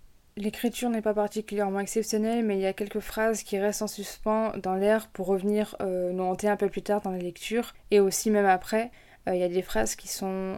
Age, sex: 20-39, female